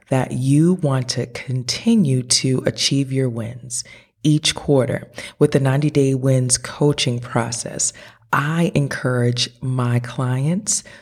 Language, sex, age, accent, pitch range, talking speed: English, female, 30-49, American, 120-140 Hz, 120 wpm